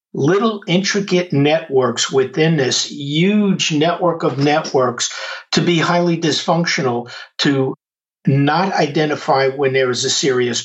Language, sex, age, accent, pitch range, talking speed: English, male, 50-69, American, 135-175 Hz, 120 wpm